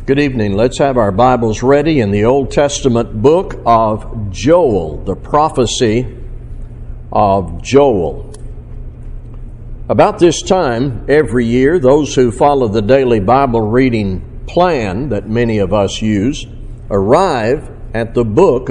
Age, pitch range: 60-79, 110-135 Hz